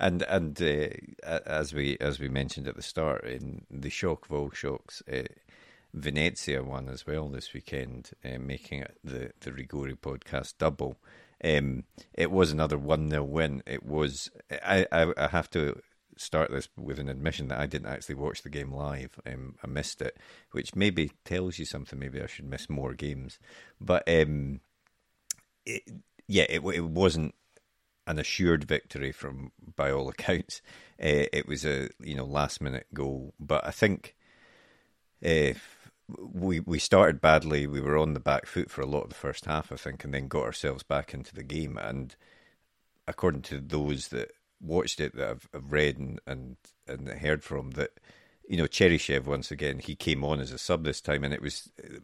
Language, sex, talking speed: English, male, 185 wpm